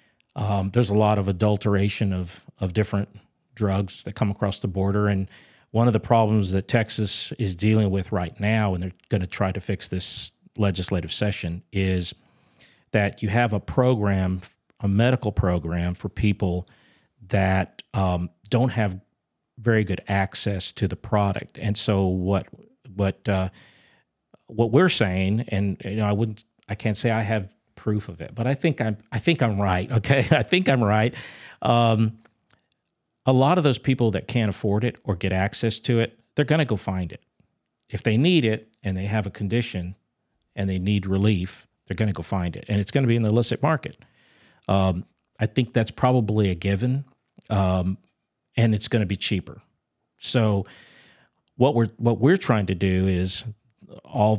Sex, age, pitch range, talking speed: male, 40-59, 95-115 Hz, 180 wpm